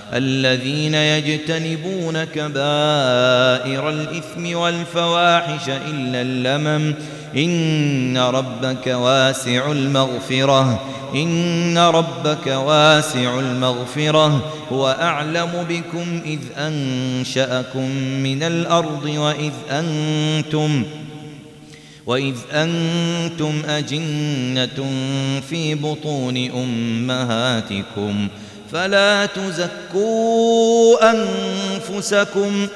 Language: Arabic